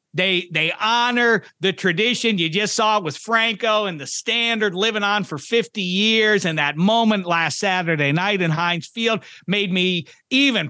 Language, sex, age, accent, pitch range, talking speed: English, male, 40-59, American, 170-215 Hz, 175 wpm